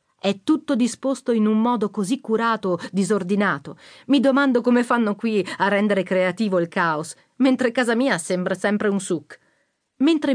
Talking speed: 155 wpm